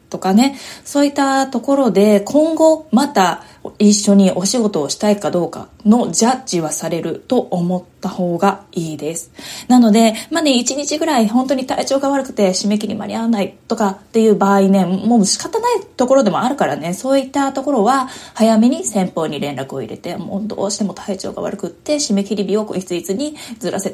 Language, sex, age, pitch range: Japanese, female, 20-39, 190-260 Hz